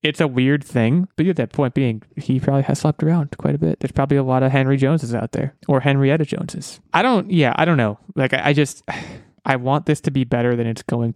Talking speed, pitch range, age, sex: 260 wpm, 120-155 Hz, 20-39, male